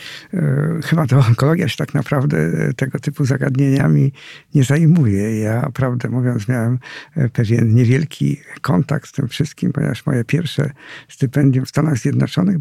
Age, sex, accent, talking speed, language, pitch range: 50-69, male, native, 135 wpm, Polish, 130-150 Hz